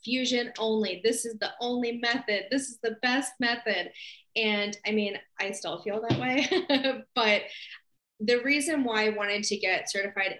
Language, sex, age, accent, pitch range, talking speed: English, female, 10-29, American, 190-220 Hz, 165 wpm